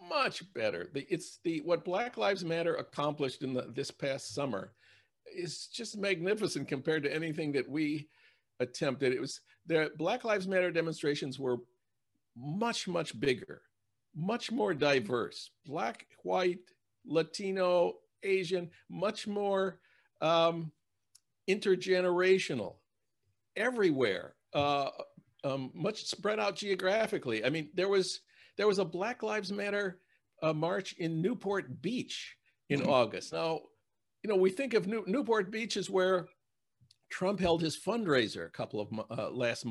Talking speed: 135 wpm